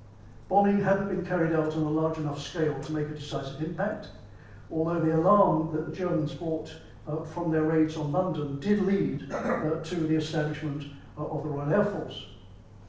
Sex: male